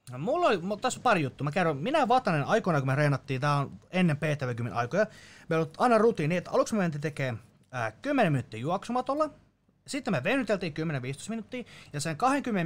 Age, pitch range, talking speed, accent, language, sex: 30-49, 135-210 Hz, 190 wpm, native, Finnish, male